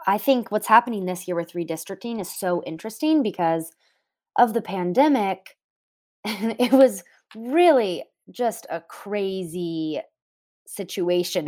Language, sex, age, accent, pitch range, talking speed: English, female, 20-39, American, 175-230 Hz, 115 wpm